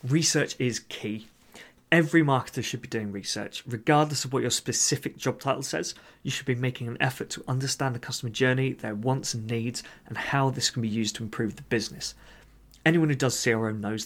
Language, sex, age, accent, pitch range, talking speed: English, male, 30-49, British, 115-140 Hz, 200 wpm